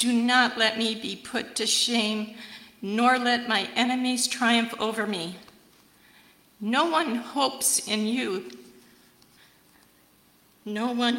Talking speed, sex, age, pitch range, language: 120 wpm, female, 50-69, 210-240 Hz, English